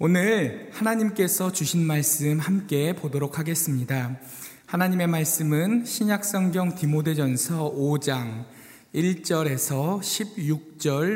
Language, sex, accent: Korean, male, native